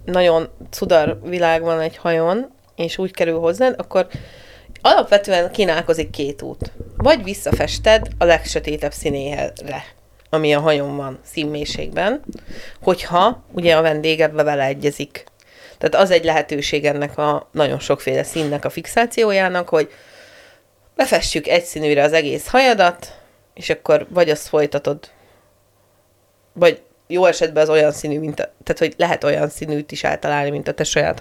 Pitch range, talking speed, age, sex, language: 150-190 Hz, 135 wpm, 30-49, female, Hungarian